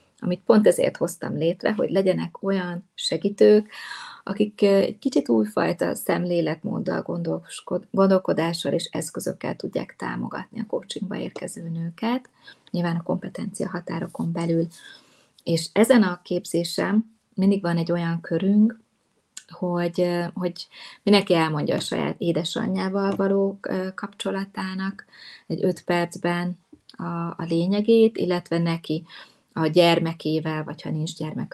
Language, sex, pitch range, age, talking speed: Hungarian, female, 165-195 Hz, 30-49, 115 wpm